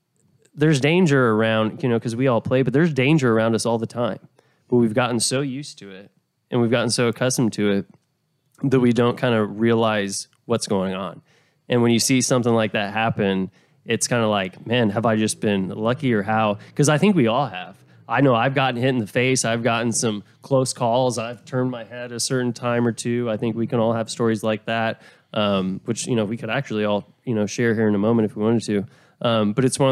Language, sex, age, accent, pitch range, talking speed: English, male, 20-39, American, 115-135 Hz, 240 wpm